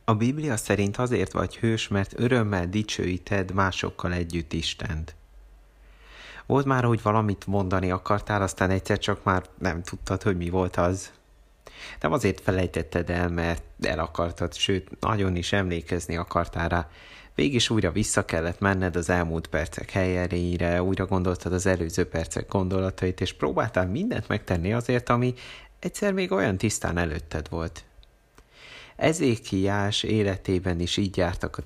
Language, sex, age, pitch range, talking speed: Hungarian, male, 30-49, 90-110 Hz, 140 wpm